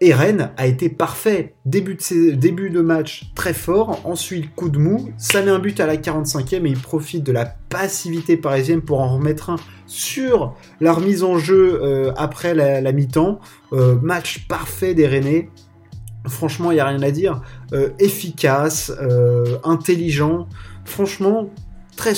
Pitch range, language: 130-165 Hz, French